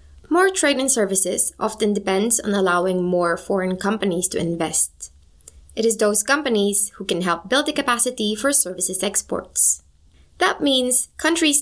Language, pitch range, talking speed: English, 175-230 Hz, 150 wpm